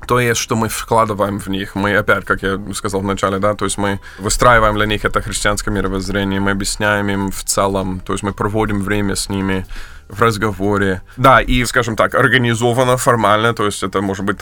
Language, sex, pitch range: Ukrainian, male, 95-105 Hz